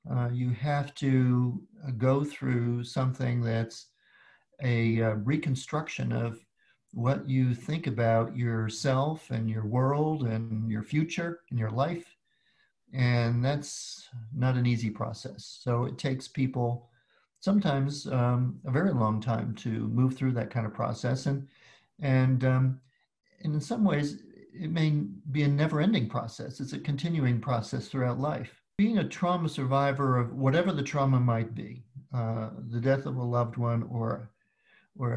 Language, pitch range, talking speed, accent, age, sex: English, 120-140 Hz, 150 wpm, American, 50-69, male